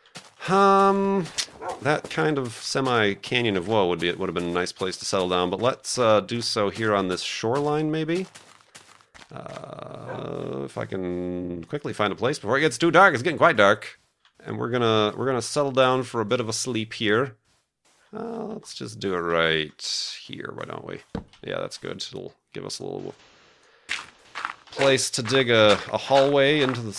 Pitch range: 95-135 Hz